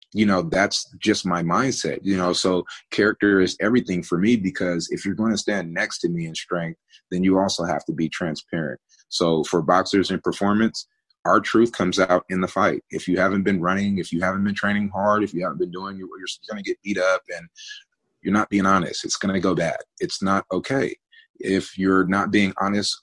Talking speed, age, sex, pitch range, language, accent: 220 wpm, 30-49, male, 90-105 Hz, English, American